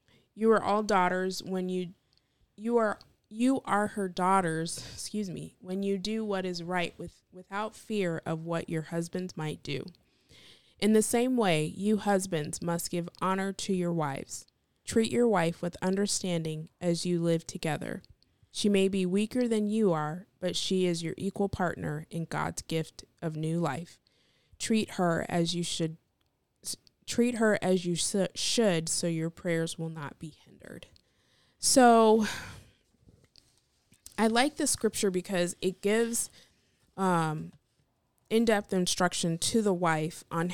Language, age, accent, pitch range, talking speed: English, 20-39, American, 165-210 Hz, 150 wpm